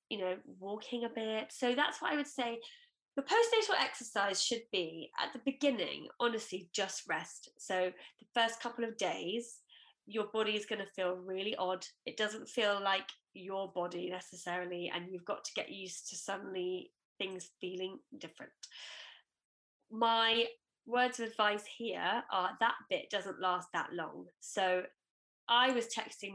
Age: 20-39